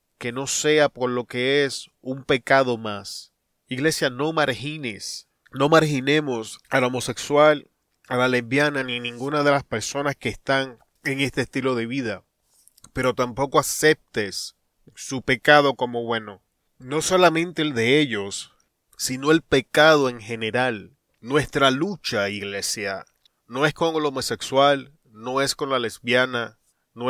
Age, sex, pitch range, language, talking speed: 30-49, male, 120-145 Hz, Spanish, 140 wpm